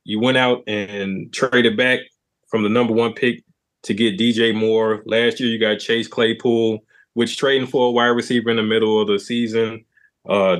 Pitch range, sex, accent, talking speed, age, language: 105-125 Hz, male, American, 190 wpm, 20-39, English